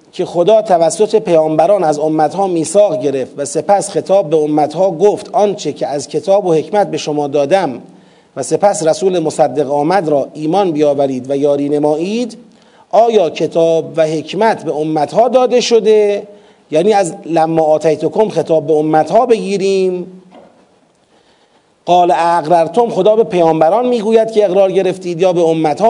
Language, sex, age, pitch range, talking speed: Persian, male, 40-59, 160-220 Hz, 150 wpm